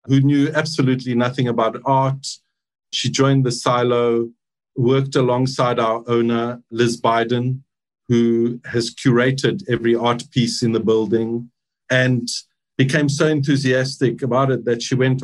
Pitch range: 125-150 Hz